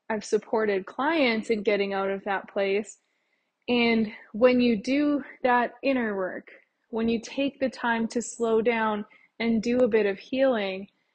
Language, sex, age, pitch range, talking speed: English, female, 20-39, 210-255 Hz, 160 wpm